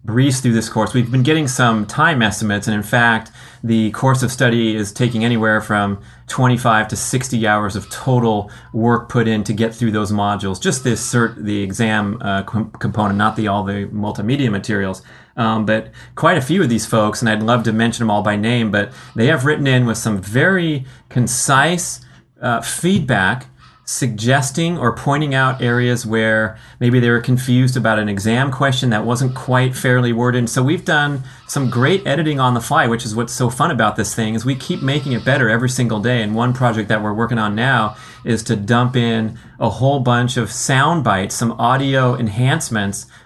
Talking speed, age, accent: 195 wpm, 30-49, American